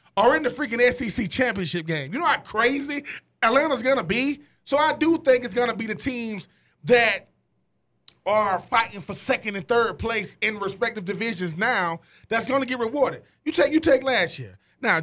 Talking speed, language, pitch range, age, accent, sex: 185 wpm, English, 200-255 Hz, 30-49, American, male